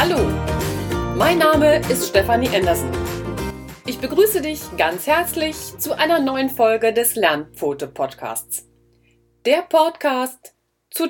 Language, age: German, 40-59